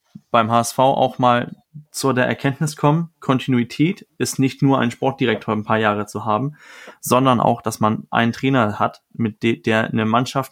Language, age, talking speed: German, 20-39, 170 wpm